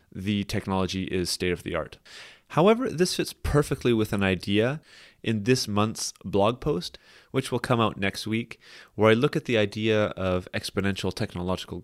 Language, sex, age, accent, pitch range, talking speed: English, male, 30-49, American, 95-130 Hz, 155 wpm